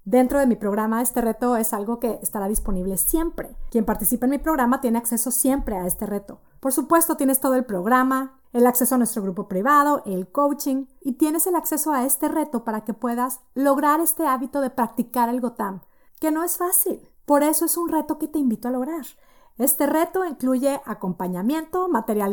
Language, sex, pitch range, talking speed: Spanish, female, 230-295 Hz, 195 wpm